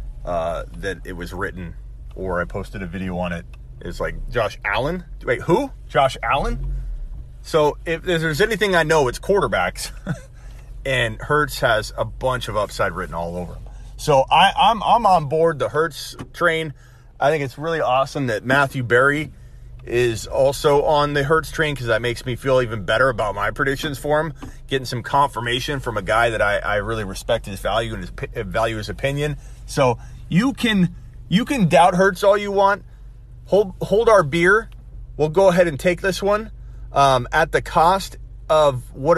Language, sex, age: English, male, 30-49